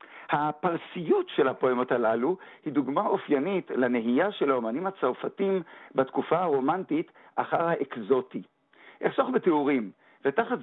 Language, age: Hebrew, 50-69